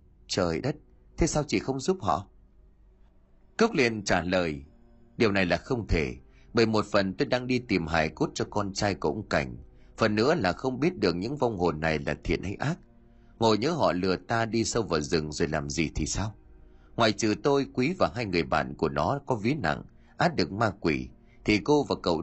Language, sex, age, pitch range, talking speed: Vietnamese, male, 30-49, 85-125 Hz, 220 wpm